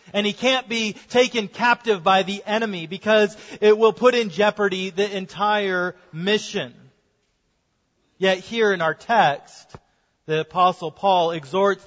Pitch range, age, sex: 180-225 Hz, 30-49, male